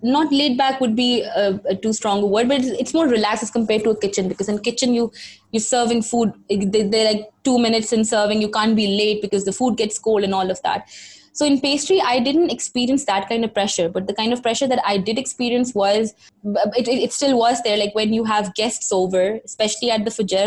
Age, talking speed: 20-39, 245 wpm